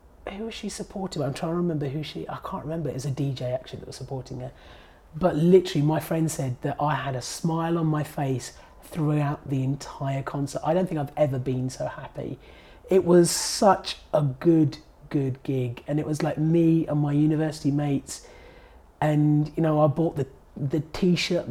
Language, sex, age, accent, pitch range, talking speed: English, male, 30-49, British, 140-170 Hz, 200 wpm